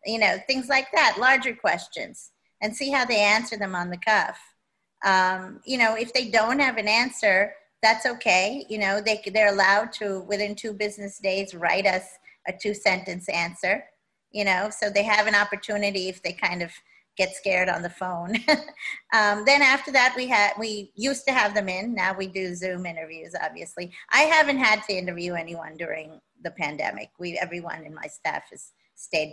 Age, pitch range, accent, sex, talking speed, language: 40-59, 180-220 Hz, American, female, 190 wpm, English